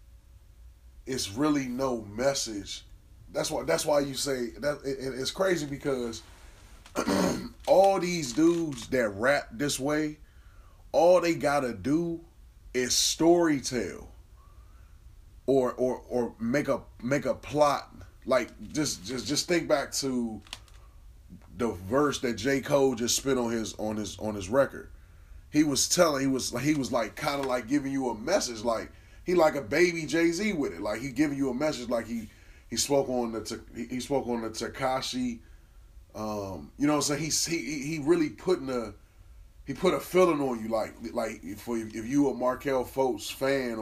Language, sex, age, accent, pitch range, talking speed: English, male, 20-39, American, 95-140 Hz, 175 wpm